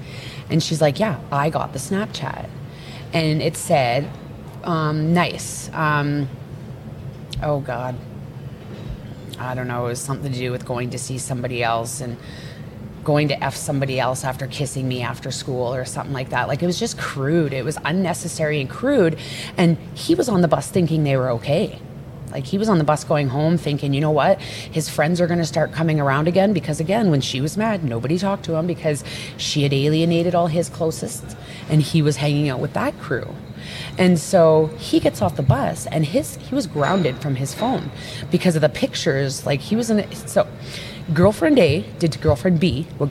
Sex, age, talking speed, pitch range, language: female, 30-49, 200 wpm, 135-170 Hz, English